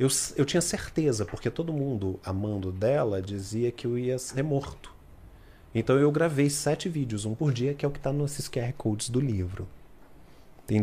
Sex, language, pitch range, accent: male, Portuguese, 105-145 Hz, Brazilian